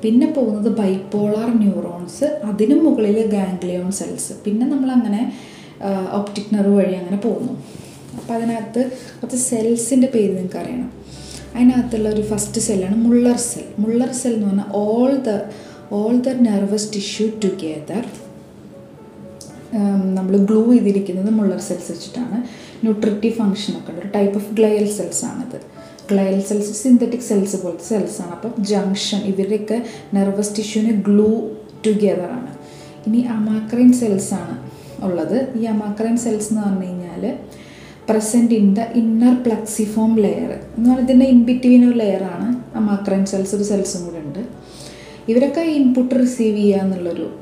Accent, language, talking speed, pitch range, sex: native, Malayalam, 125 wpm, 200-235 Hz, female